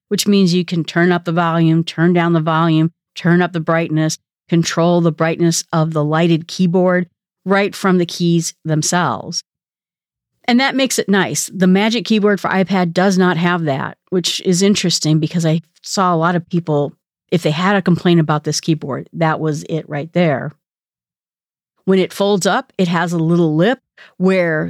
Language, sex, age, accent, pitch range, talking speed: English, female, 40-59, American, 160-200 Hz, 180 wpm